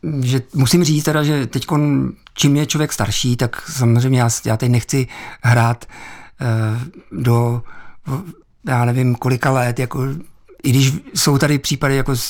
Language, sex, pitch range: Czech, male, 125-145 Hz